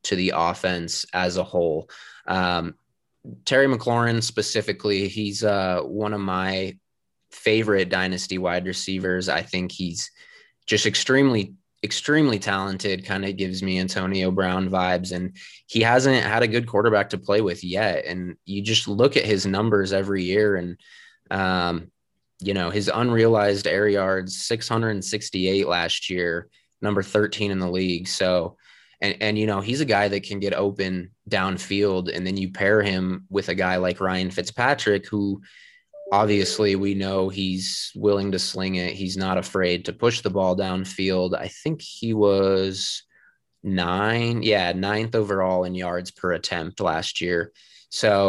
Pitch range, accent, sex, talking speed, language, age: 90-105 Hz, American, male, 155 wpm, English, 20-39